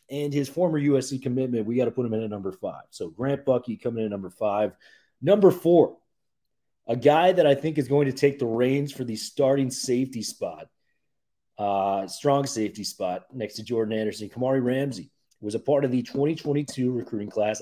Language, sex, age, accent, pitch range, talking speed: English, male, 30-49, American, 115-140 Hz, 200 wpm